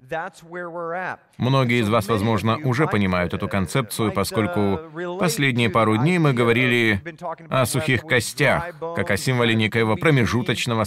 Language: Russian